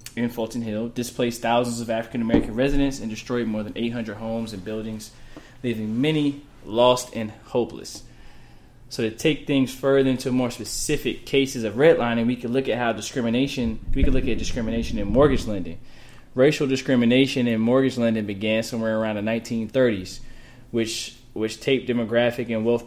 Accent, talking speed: American, 165 wpm